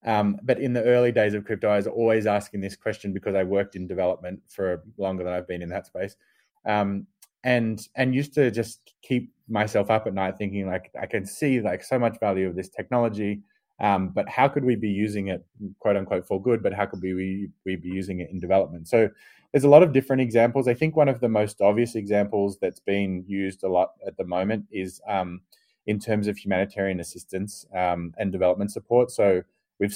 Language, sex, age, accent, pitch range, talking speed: English, male, 20-39, Australian, 95-110 Hz, 215 wpm